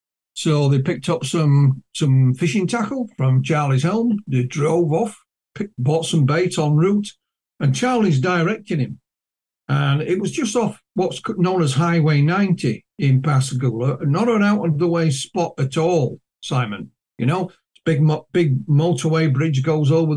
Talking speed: 150 wpm